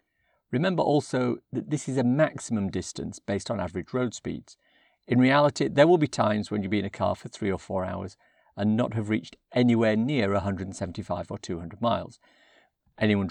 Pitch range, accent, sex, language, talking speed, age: 100-140 Hz, British, male, English, 185 wpm, 50-69